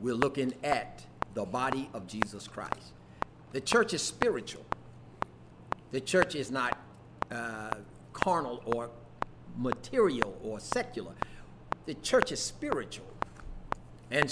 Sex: male